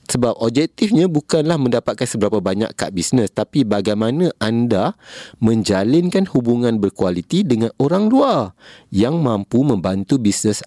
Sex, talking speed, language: male, 120 wpm, Indonesian